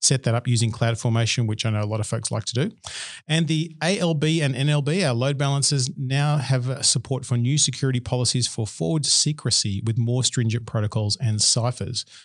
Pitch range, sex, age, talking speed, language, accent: 115-135 Hz, male, 40-59, 190 wpm, English, Australian